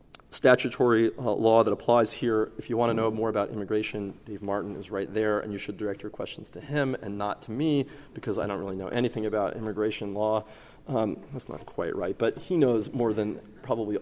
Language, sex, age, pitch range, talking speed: English, male, 30-49, 110-145 Hz, 220 wpm